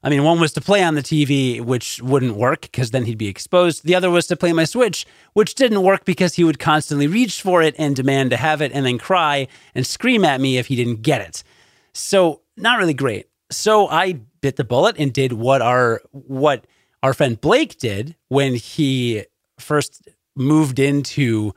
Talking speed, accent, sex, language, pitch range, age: 205 wpm, American, male, English, 130-170 Hz, 30-49